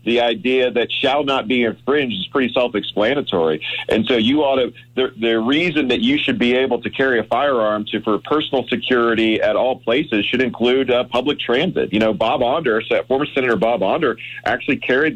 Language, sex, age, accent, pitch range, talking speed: English, male, 40-59, American, 110-130 Hz, 195 wpm